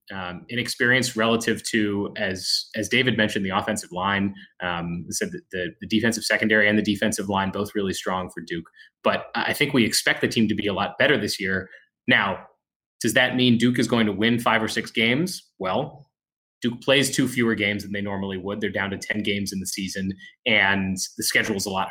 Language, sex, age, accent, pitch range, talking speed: English, male, 20-39, American, 100-120 Hz, 215 wpm